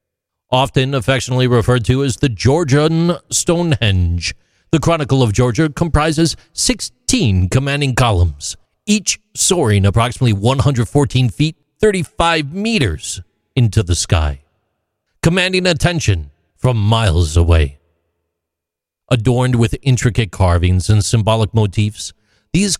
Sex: male